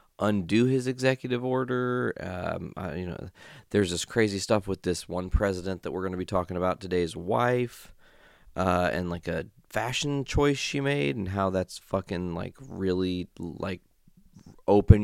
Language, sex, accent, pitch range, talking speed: English, male, American, 85-120 Hz, 160 wpm